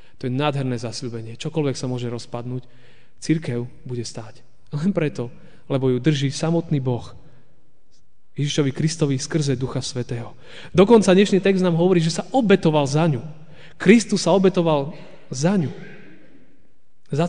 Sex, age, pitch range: male, 30-49, 135-175 Hz